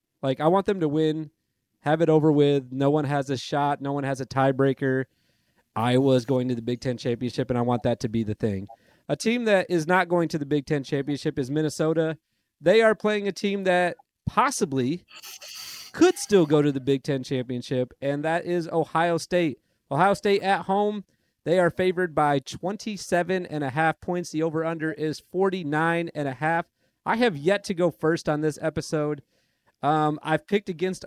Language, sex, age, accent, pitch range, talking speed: English, male, 30-49, American, 140-175 Hz, 185 wpm